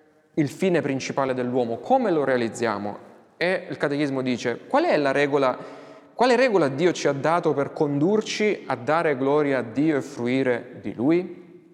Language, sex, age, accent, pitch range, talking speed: Italian, male, 30-49, native, 125-155 Hz, 165 wpm